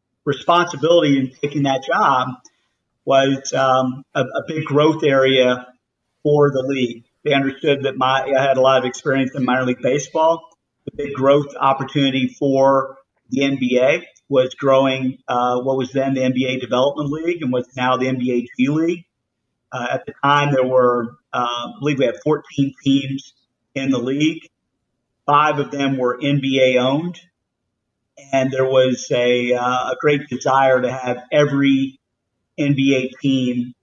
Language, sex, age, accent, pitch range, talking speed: English, male, 50-69, American, 125-140 Hz, 155 wpm